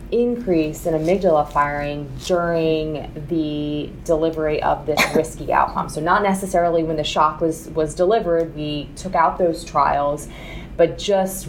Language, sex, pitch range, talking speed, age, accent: English, female, 150-170 Hz, 140 wpm, 20-39, American